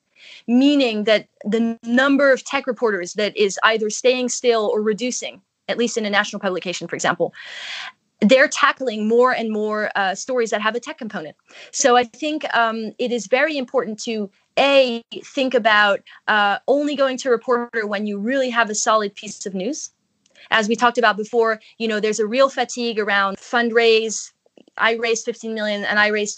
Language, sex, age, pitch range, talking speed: English, female, 20-39, 205-240 Hz, 185 wpm